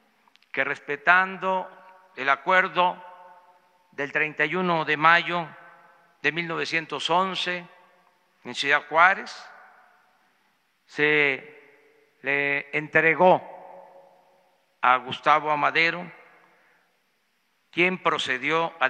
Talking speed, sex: 70 wpm, male